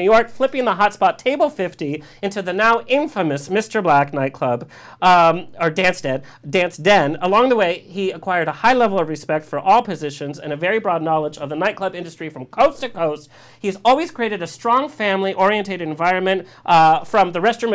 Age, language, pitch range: 40-59, English, 155-225 Hz